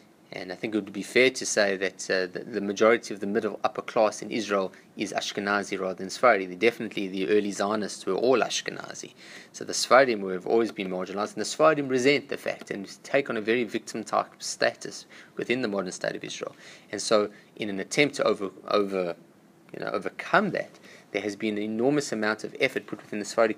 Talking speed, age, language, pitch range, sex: 215 wpm, 20-39, English, 100-120 Hz, male